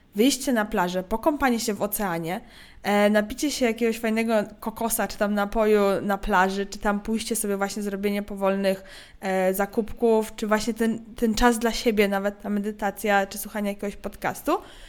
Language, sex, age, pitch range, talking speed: Polish, female, 20-39, 205-235 Hz, 165 wpm